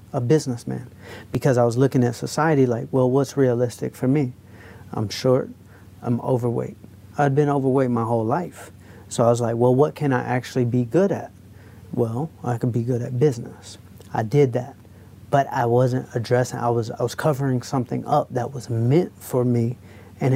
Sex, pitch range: male, 105-135 Hz